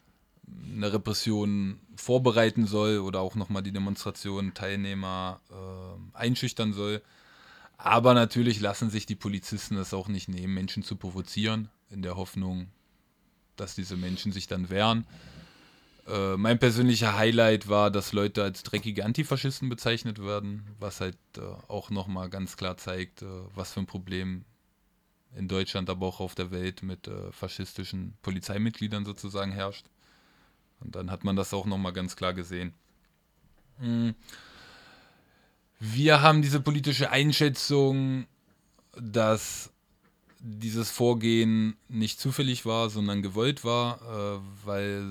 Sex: male